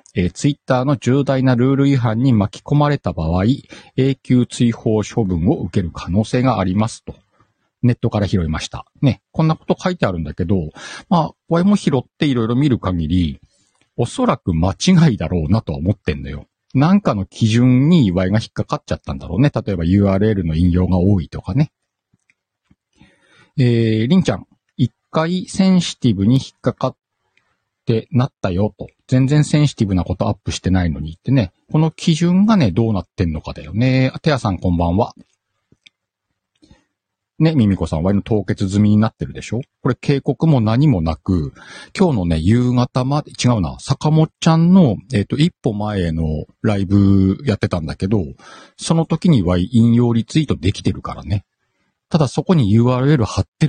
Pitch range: 95-140 Hz